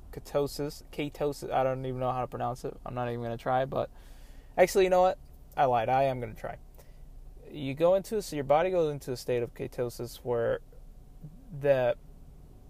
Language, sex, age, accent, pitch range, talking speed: English, male, 20-39, American, 120-135 Hz, 200 wpm